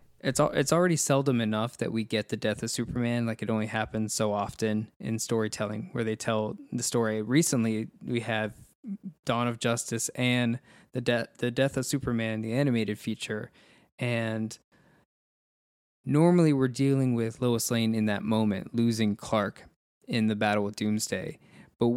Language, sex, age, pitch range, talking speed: English, male, 20-39, 110-130 Hz, 160 wpm